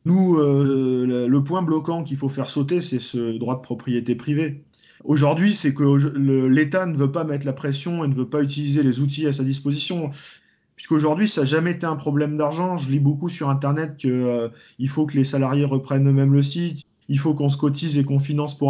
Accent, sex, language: French, male, French